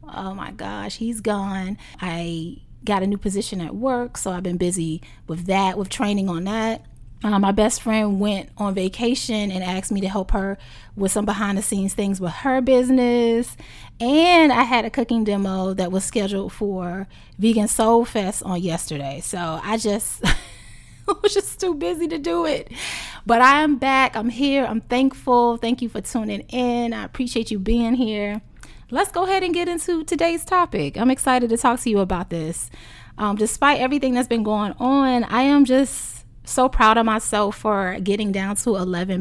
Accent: American